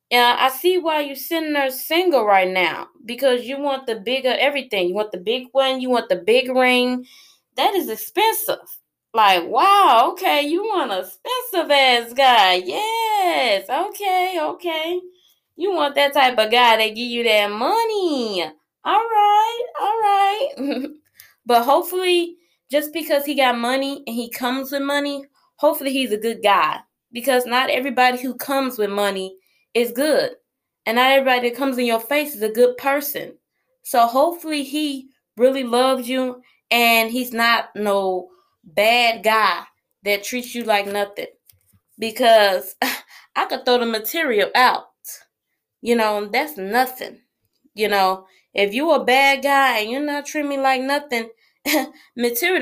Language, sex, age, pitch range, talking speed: English, female, 20-39, 230-305 Hz, 155 wpm